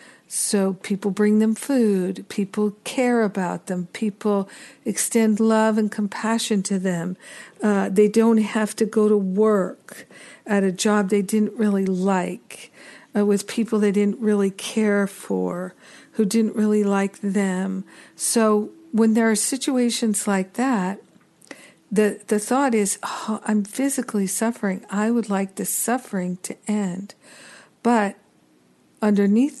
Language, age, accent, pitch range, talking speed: English, 50-69, American, 195-225 Hz, 135 wpm